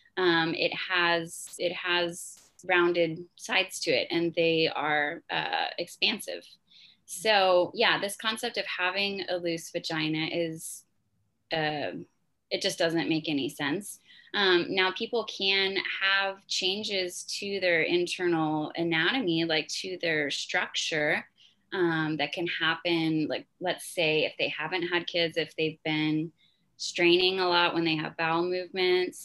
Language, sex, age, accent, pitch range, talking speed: English, female, 20-39, American, 160-180 Hz, 140 wpm